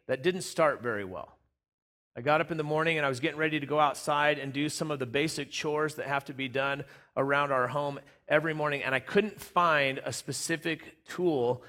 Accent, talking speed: American, 220 wpm